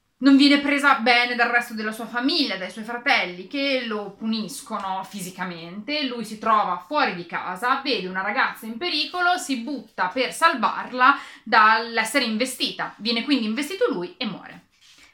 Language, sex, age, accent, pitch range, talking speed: Italian, female, 30-49, native, 195-280 Hz, 155 wpm